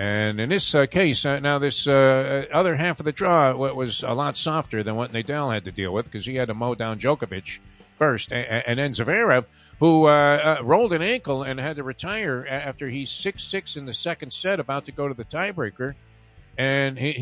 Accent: American